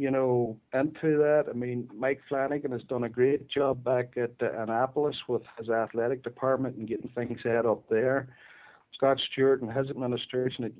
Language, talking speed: English, 180 wpm